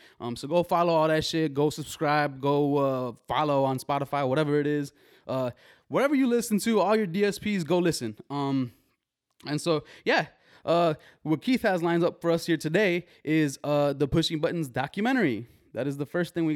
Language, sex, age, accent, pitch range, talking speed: English, male, 20-39, American, 125-155 Hz, 190 wpm